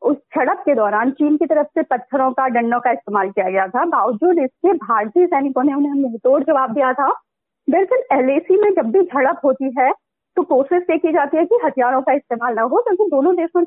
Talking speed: 220 wpm